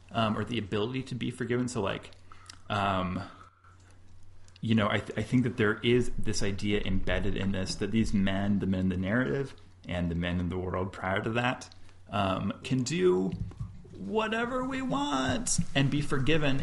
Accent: American